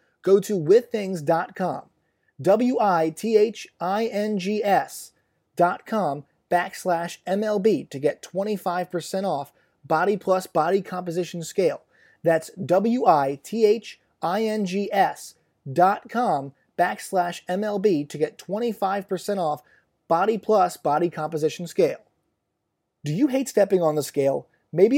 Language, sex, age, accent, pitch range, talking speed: English, male, 30-49, American, 155-210 Hz, 95 wpm